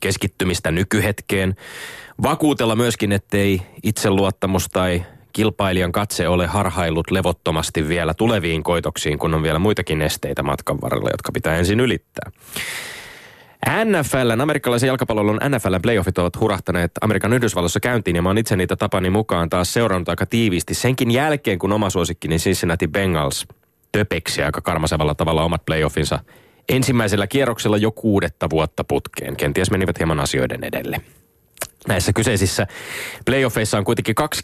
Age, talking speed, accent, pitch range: 20-39, 130 wpm, native, 90-115 Hz